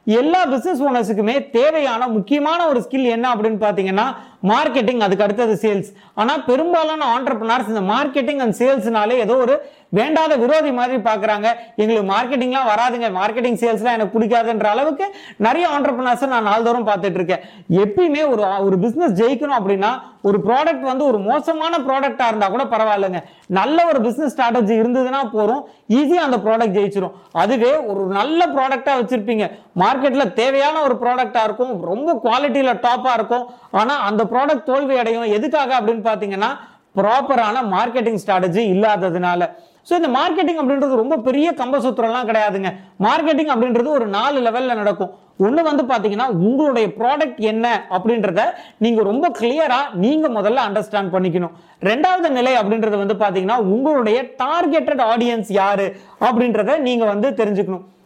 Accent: native